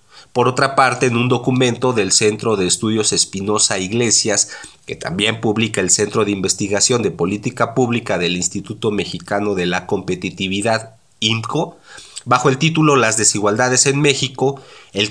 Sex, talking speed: male, 145 wpm